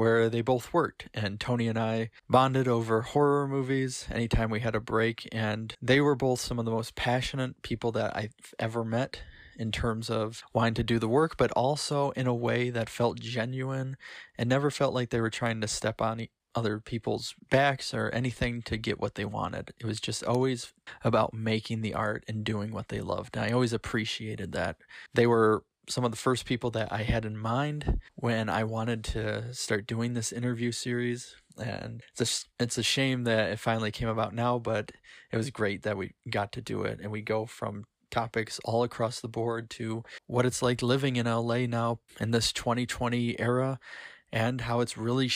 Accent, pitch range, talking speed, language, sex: American, 110-125 Hz, 200 wpm, English, male